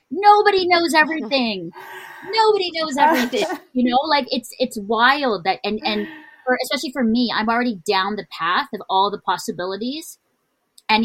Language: English